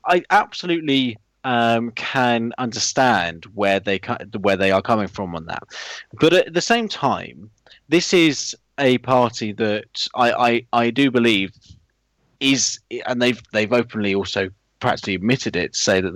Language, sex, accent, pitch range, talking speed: English, male, British, 105-145 Hz, 150 wpm